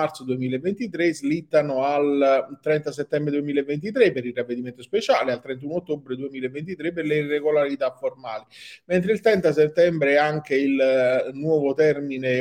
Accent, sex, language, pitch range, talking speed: native, male, Italian, 125-155 Hz, 135 wpm